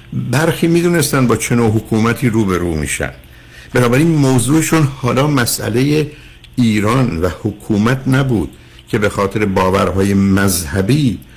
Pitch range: 90-125 Hz